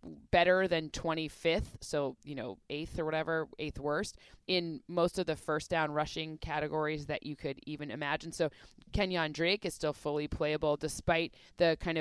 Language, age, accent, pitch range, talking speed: English, 20-39, American, 150-165 Hz, 170 wpm